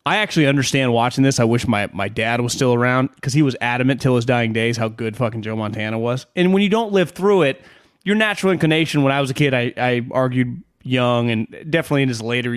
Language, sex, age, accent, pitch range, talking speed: English, male, 30-49, American, 120-180 Hz, 245 wpm